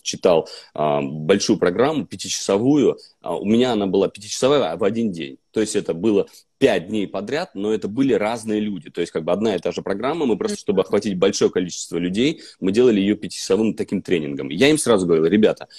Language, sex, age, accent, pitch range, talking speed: Russian, male, 30-49, native, 95-120 Hz, 195 wpm